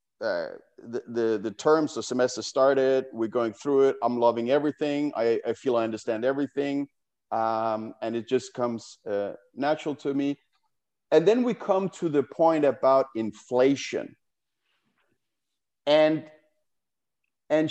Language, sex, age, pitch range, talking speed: English, male, 50-69, 120-155 Hz, 140 wpm